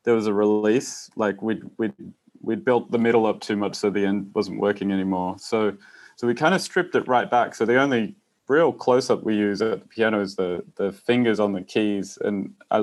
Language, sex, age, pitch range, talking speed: English, male, 30-49, 100-115 Hz, 230 wpm